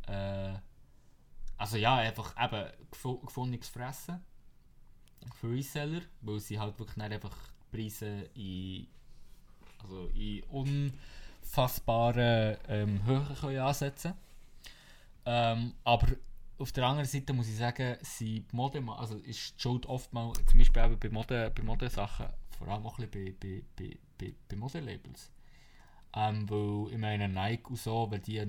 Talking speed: 135 wpm